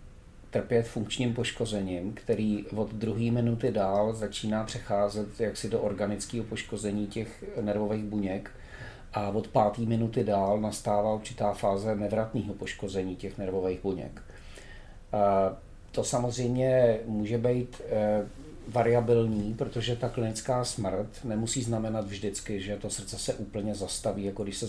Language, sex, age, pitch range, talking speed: Czech, male, 40-59, 105-120 Hz, 125 wpm